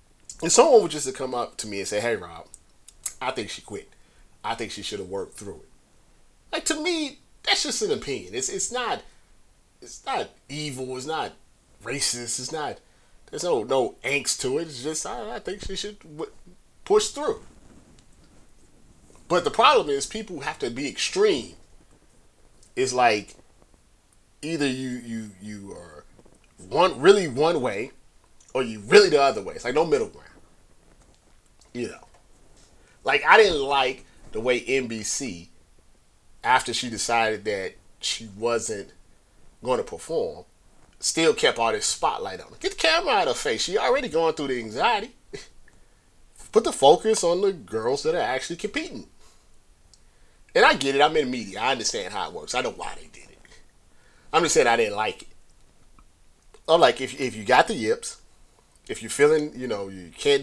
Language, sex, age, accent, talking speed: English, male, 30-49, American, 180 wpm